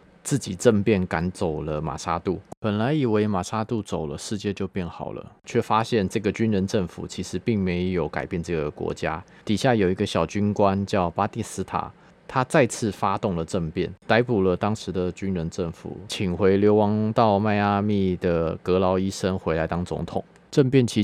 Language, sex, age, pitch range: Chinese, male, 20-39, 90-110 Hz